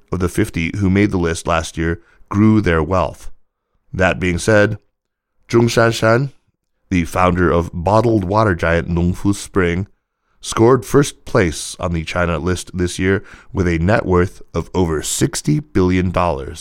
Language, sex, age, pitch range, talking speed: English, male, 30-49, 85-105 Hz, 150 wpm